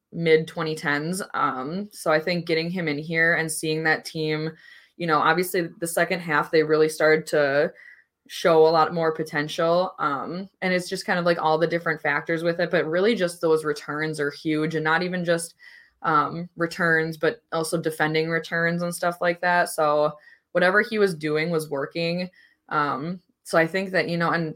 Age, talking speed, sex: 20-39, 190 wpm, female